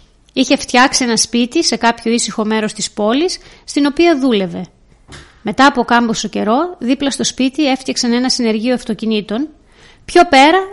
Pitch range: 220-300 Hz